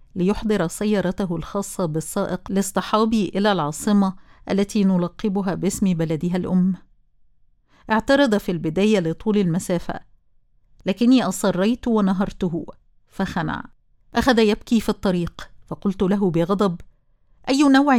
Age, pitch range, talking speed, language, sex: 50-69, 175-210 Hz, 100 wpm, Arabic, female